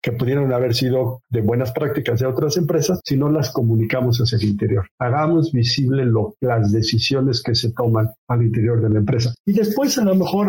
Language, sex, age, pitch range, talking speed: Spanish, male, 50-69, 120-155 Hz, 195 wpm